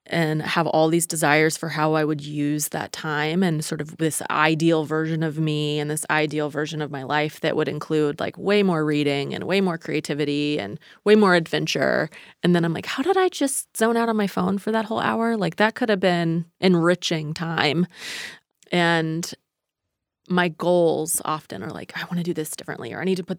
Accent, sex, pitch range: American, female, 150-175 Hz